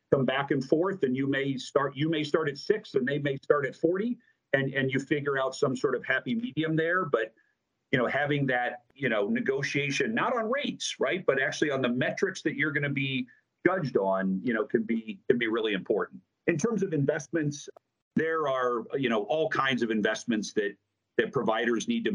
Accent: American